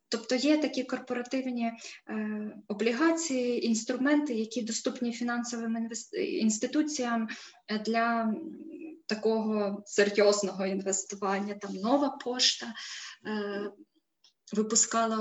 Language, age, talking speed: Ukrainian, 20-39, 85 wpm